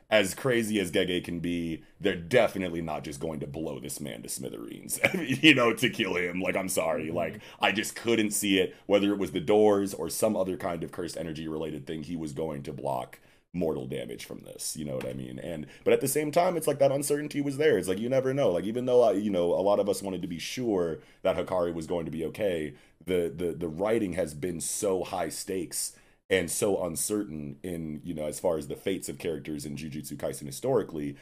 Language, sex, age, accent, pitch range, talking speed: English, male, 30-49, American, 80-115 Hz, 235 wpm